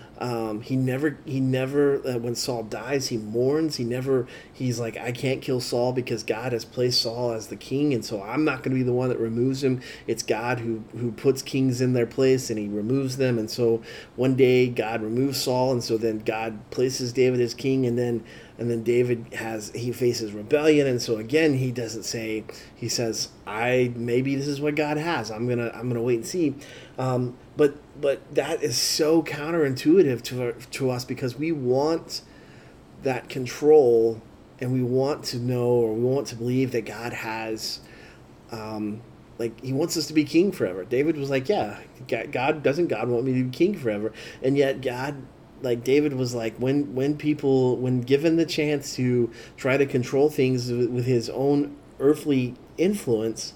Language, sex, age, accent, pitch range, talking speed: English, male, 30-49, American, 115-140 Hz, 195 wpm